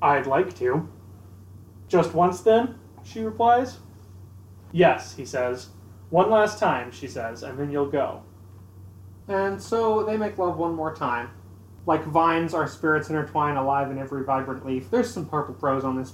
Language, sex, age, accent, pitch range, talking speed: English, male, 30-49, American, 100-150 Hz, 165 wpm